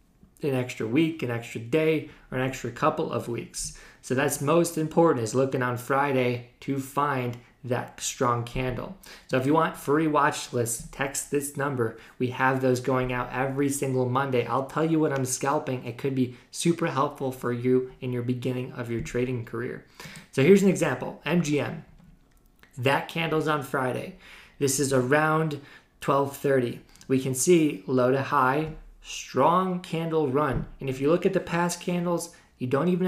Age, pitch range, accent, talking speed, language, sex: 20-39, 125-155 Hz, American, 175 wpm, English, male